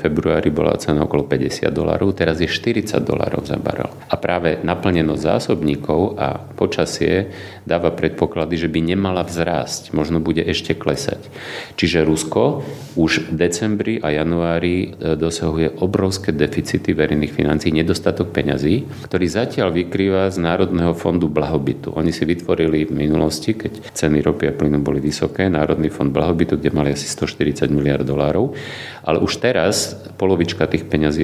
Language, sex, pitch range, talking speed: Slovak, male, 75-100 Hz, 150 wpm